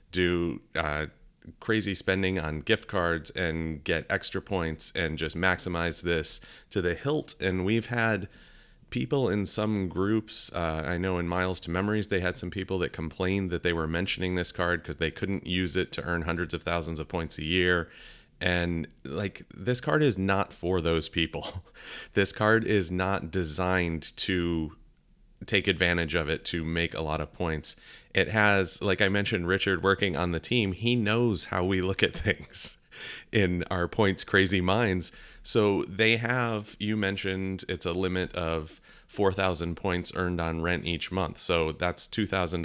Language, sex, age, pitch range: English, male, 30-49, 85-100 Hz